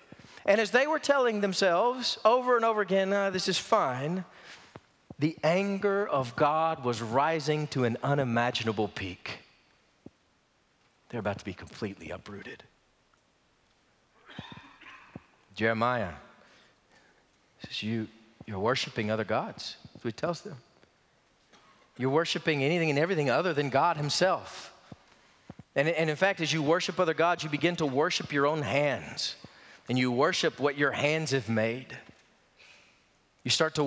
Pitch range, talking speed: 130-200 Hz, 135 wpm